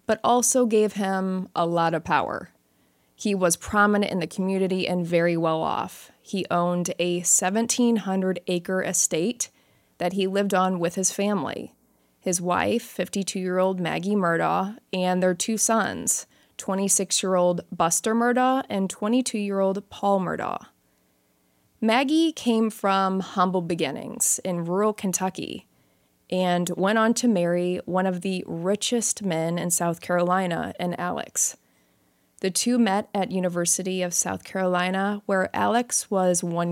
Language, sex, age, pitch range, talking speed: English, female, 20-39, 175-205 Hz, 130 wpm